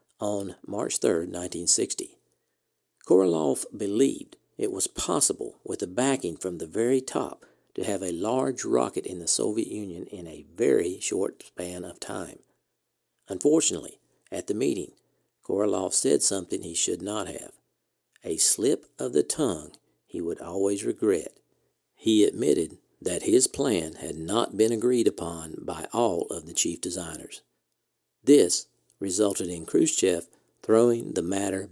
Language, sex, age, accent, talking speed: English, male, 50-69, American, 140 wpm